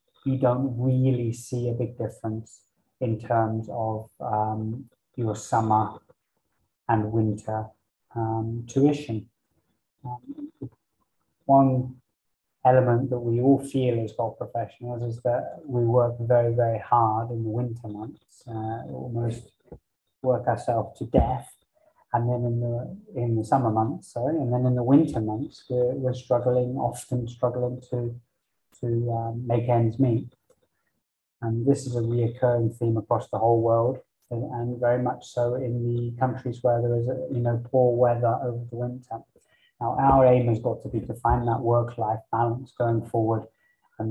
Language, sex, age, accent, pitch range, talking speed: English, male, 20-39, British, 115-125 Hz, 150 wpm